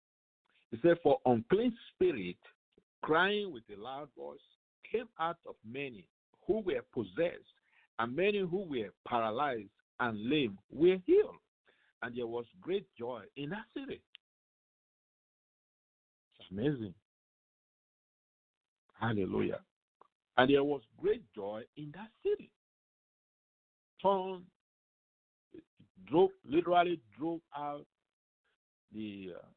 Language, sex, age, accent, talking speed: English, male, 50-69, Nigerian, 110 wpm